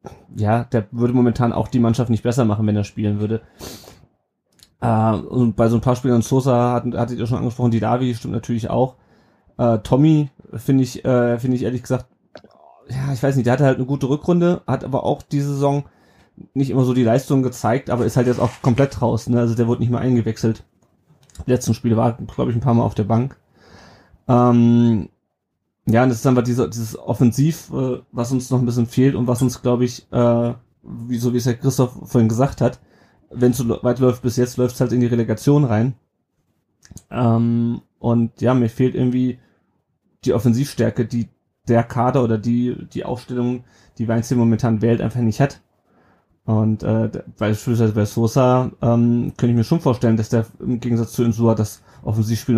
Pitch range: 115-125 Hz